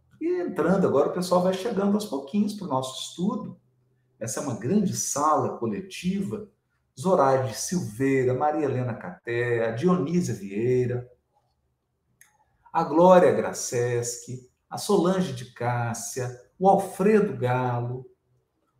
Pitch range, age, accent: 125-195 Hz, 50-69, Brazilian